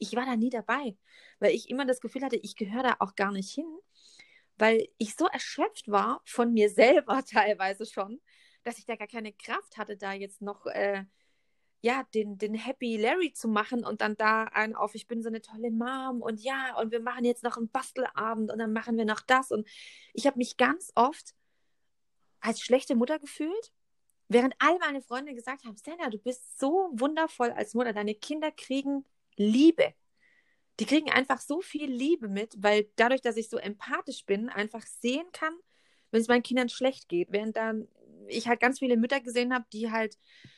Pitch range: 220-270 Hz